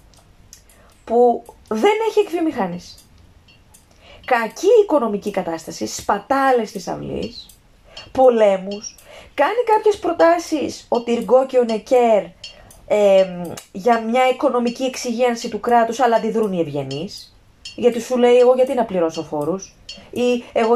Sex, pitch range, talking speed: female, 190-310 Hz, 115 wpm